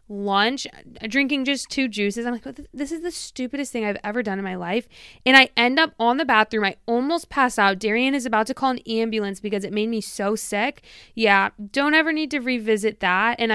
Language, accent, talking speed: English, American, 220 wpm